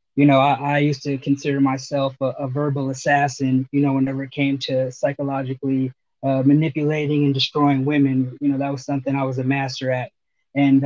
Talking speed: 195 wpm